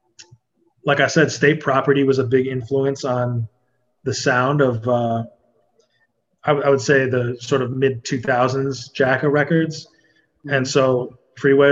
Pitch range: 125-145 Hz